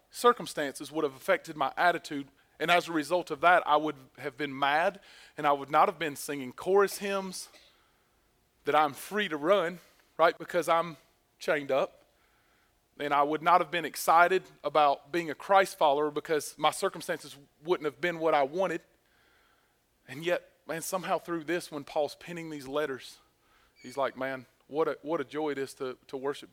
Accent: American